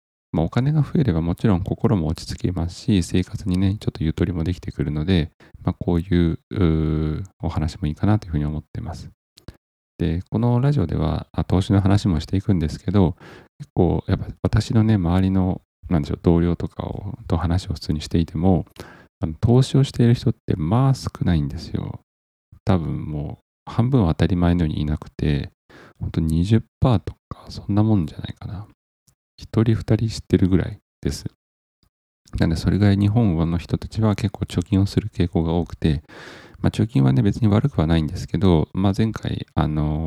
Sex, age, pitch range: male, 40-59, 80-105 Hz